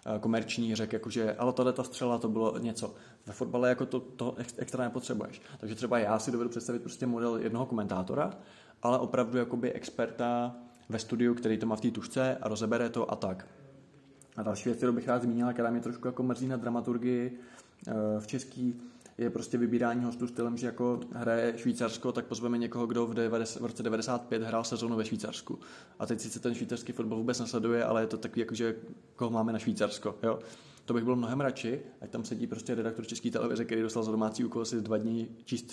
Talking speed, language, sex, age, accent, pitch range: 205 wpm, Czech, male, 20-39, native, 115-125 Hz